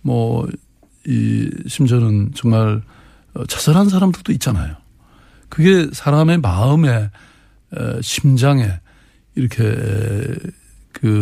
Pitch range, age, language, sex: 110-145 Hz, 60-79, Korean, male